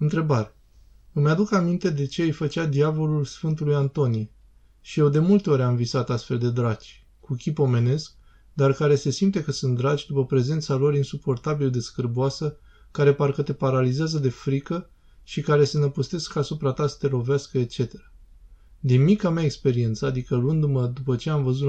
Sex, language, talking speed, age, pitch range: male, Romanian, 175 wpm, 20-39, 125-150 Hz